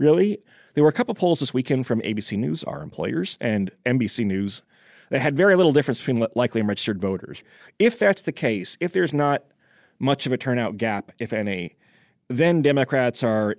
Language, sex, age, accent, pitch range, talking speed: English, male, 30-49, American, 115-145 Hz, 195 wpm